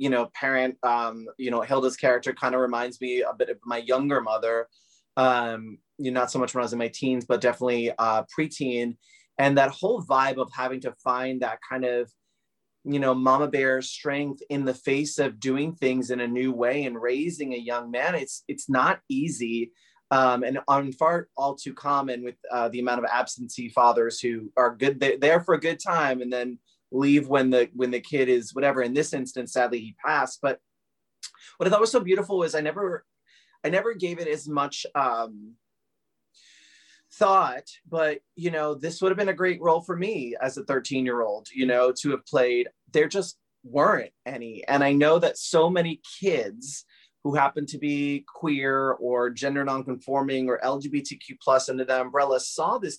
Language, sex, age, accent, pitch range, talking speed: English, male, 20-39, American, 125-145 Hz, 195 wpm